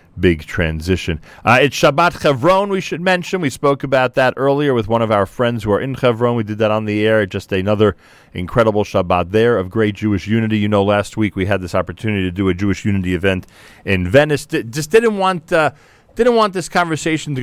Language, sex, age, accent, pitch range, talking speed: English, male, 40-59, American, 95-125 Hz, 225 wpm